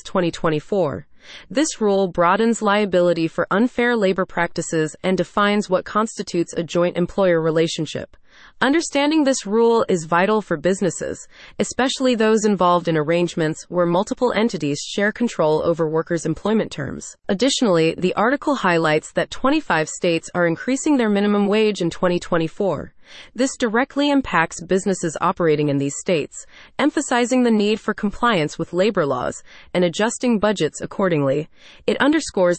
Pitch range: 170-230 Hz